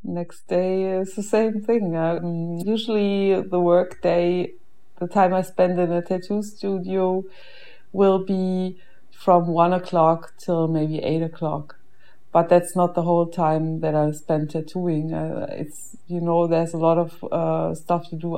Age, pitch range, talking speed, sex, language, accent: 20-39, 150-175 Hz, 165 wpm, female, English, German